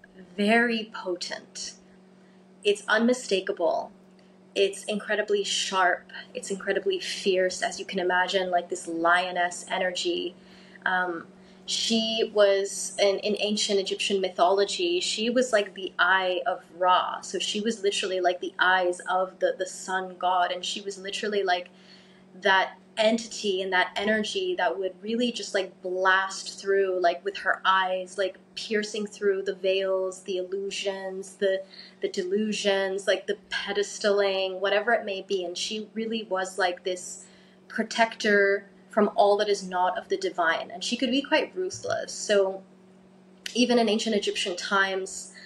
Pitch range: 185-205 Hz